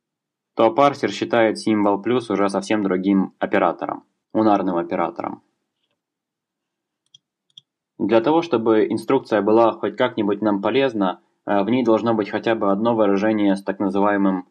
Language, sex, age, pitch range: Russian, male, 20-39, 100-120 Hz